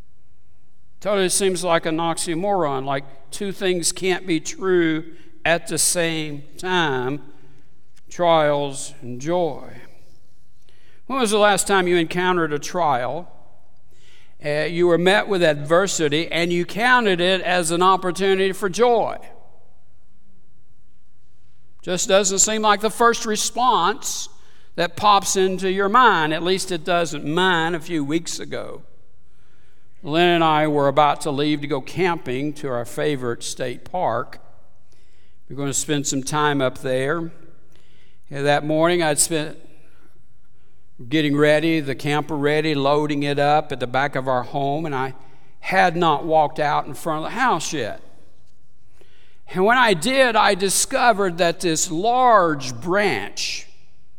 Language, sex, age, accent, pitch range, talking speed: English, male, 60-79, American, 140-185 Hz, 140 wpm